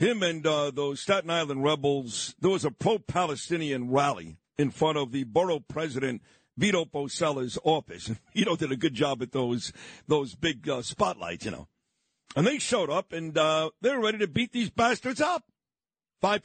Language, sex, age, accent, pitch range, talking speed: English, male, 50-69, American, 140-185 Hz, 180 wpm